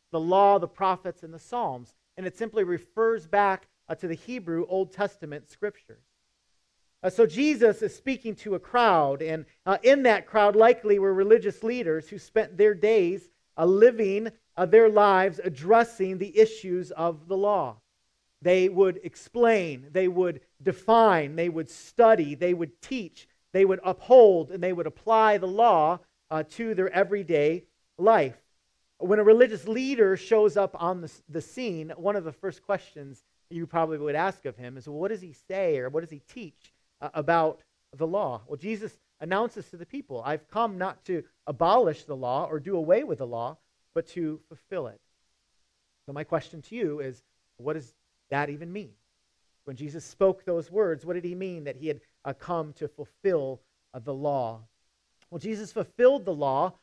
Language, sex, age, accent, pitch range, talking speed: English, male, 40-59, American, 155-210 Hz, 180 wpm